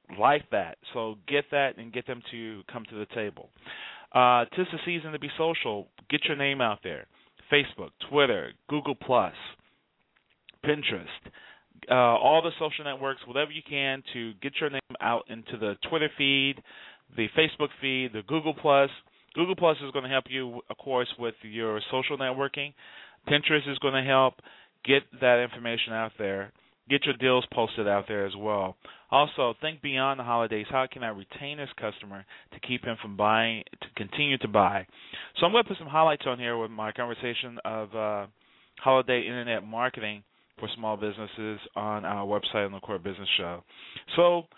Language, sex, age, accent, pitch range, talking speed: English, male, 30-49, American, 110-140 Hz, 180 wpm